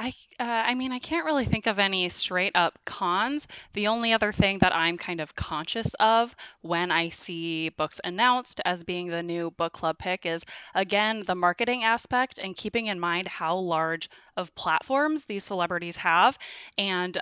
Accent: American